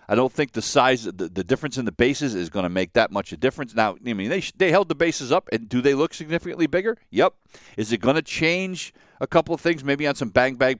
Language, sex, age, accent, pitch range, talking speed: English, male, 50-69, American, 110-145 Hz, 285 wpm